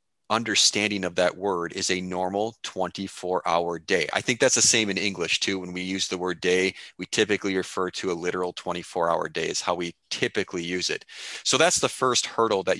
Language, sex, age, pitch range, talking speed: English, male, 30-49, 90-105 Hz, 200 wpm